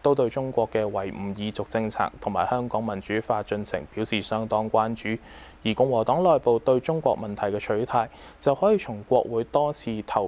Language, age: Chinese, 20-39